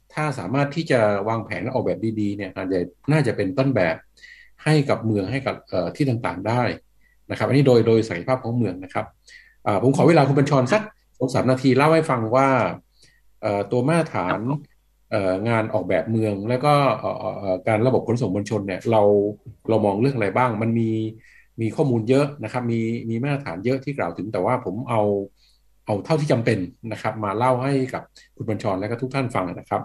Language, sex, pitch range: English, male, 110-135 Hz